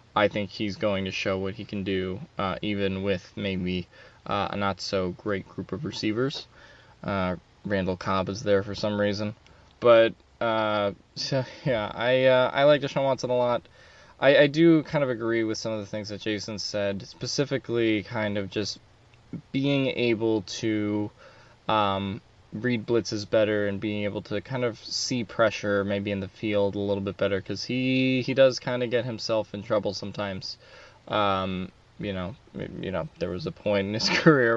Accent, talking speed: American, 180 wpm